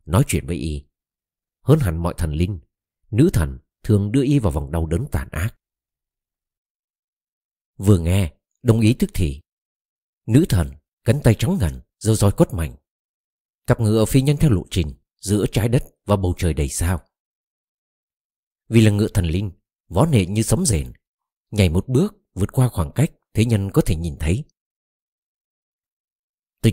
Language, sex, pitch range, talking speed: Vietnamese, male, 85-115 Hz, 170 wpm